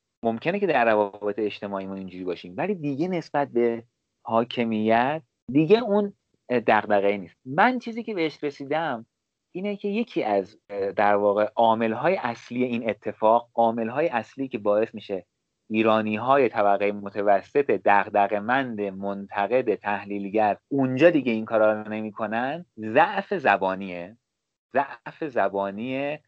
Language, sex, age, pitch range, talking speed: Persian, male, 30-49, 100-145 Hz, 120 wpm